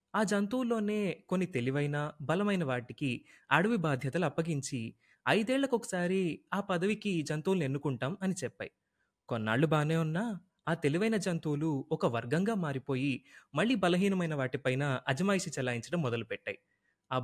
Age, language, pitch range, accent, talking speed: 20-39, Telugu, 130-190 Hz, native, 110 wpm